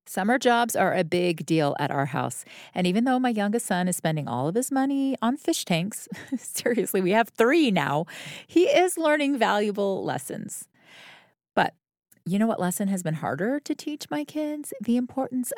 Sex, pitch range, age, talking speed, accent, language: female, 175-245 Hz, 40-59, 175 wpm, American, English